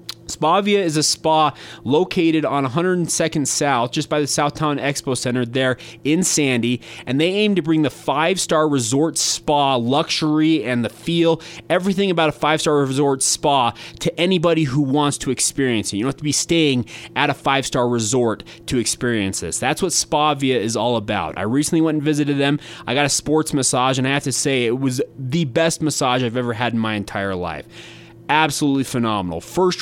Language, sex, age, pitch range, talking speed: English, male, 20-39, 125-160 Hz, 185 wpm